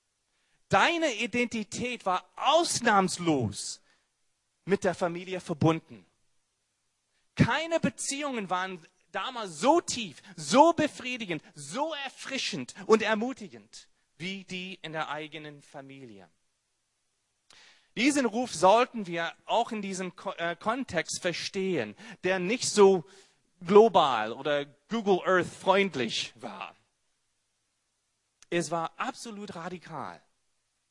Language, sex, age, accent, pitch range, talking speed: German, male, 30-49, German, 155-215 Hz, 95 wpm